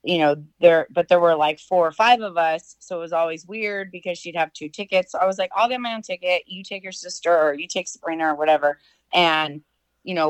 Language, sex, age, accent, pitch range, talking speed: English, female, 30-49, American, 155-185 Hz, 250 wpm